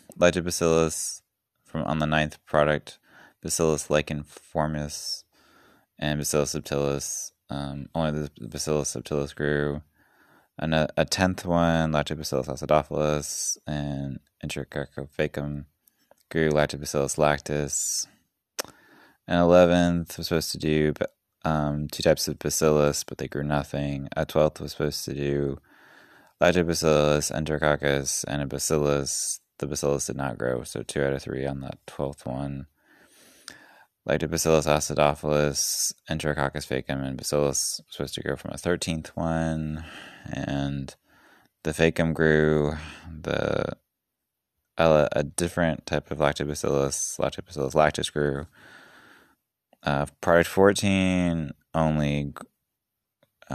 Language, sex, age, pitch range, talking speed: English, male, 20-39, 70-80 Hz, 110 wpm